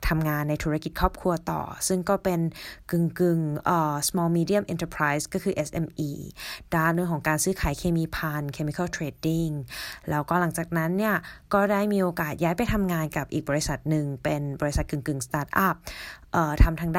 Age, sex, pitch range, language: 20-39, female, 150-185 Hz, Thai